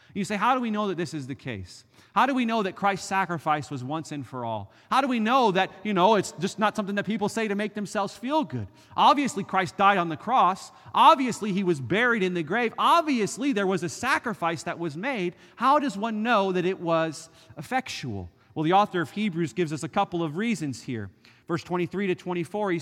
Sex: male